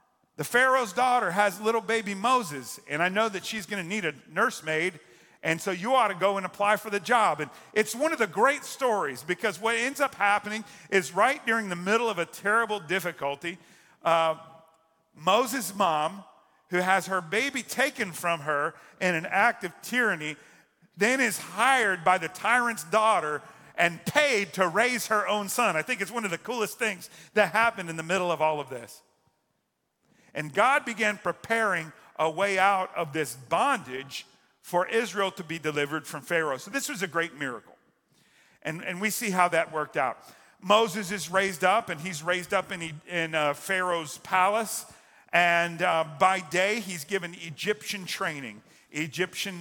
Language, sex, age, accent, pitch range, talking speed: English, male, 50-69, American, 165-220 Hz, 180 wpm